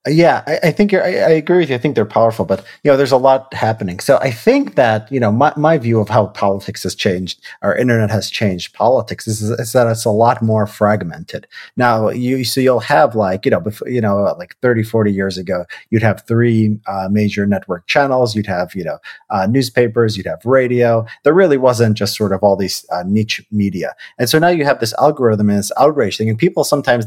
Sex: male